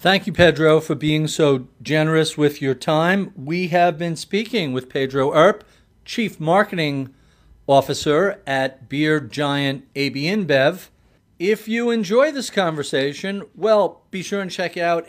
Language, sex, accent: English, male, American